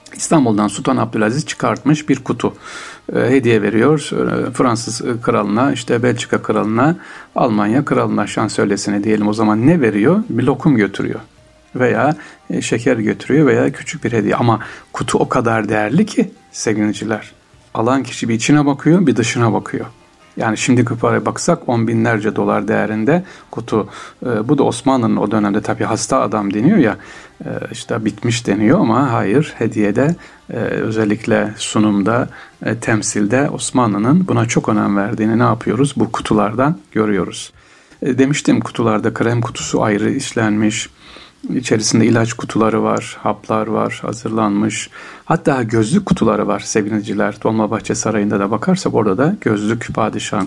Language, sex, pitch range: Turkish, male, 105-130 Hz